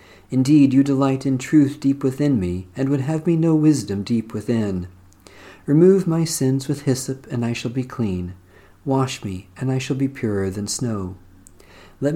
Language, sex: English, male